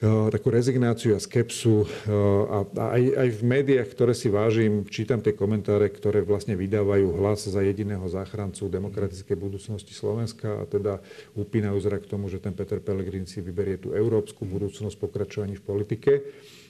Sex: male